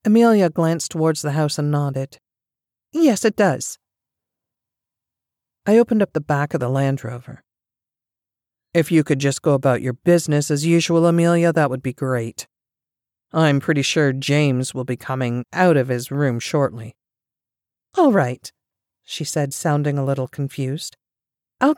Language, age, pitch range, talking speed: English, 40-59, 135-185 Hz, 150 wpm